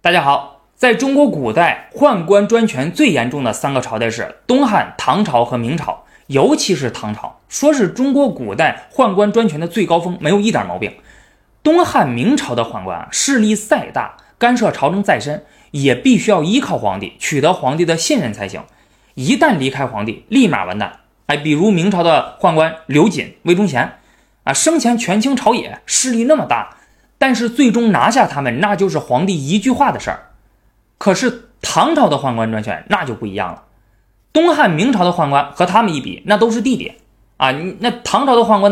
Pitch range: 140-235 Hz